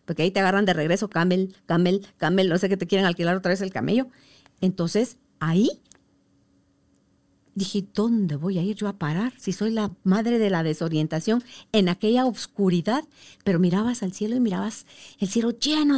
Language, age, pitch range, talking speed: Spanish, 50-69, 190-245 Hz, 180 wpm